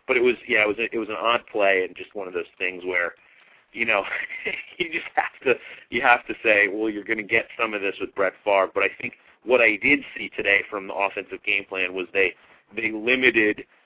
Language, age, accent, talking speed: English, 40-59, American, 245 wpm